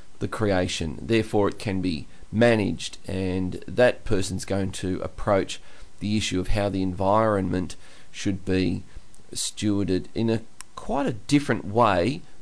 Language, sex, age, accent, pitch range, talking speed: English, male, 30-49, Australian, 95-125 Hz, 135 wpm